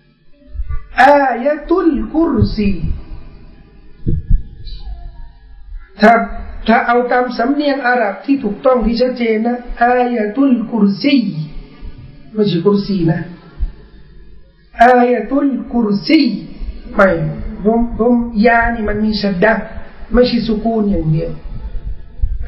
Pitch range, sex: 195-240 Hz, male